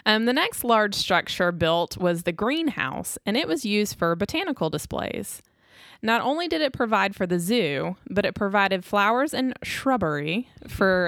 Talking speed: 170 wpm